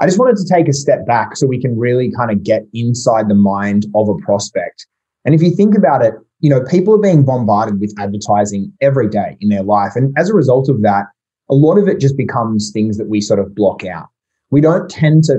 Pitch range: 105-140 Hz